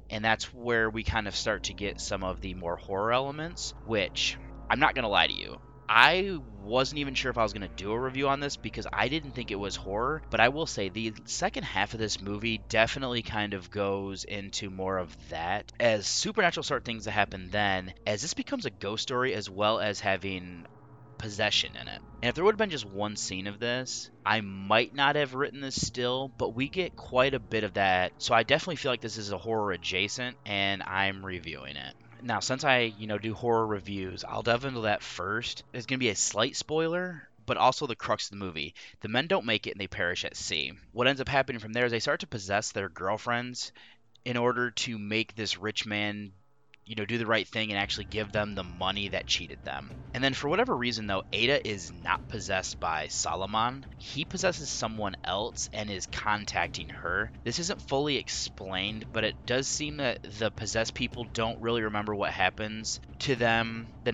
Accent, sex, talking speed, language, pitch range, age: American, male, 220 wpm, English, 100-125 Hz, 30-49